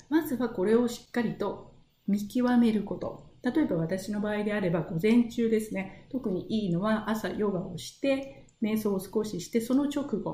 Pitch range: 190-240 Hz